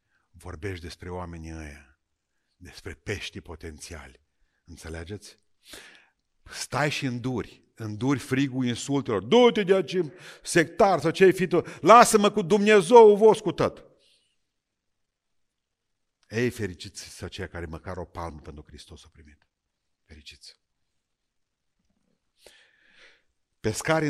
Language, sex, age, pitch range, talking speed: Romanian, male, 50-69, 90-125 Hz, 95 wpm